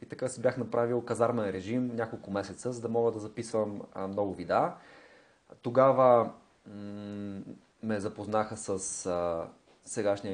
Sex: male